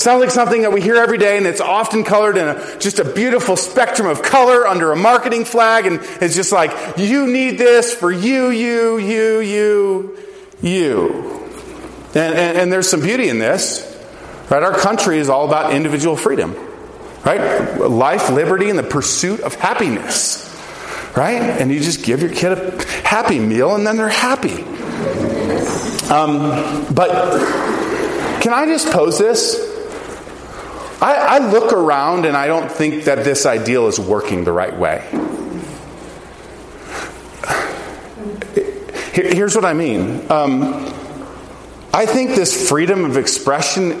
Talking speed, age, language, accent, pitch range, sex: 150 wpm, 40-59, English, American, 180-255 Hz, male